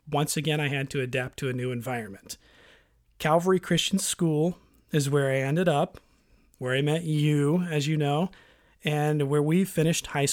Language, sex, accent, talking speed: English, male, American, 175 wpm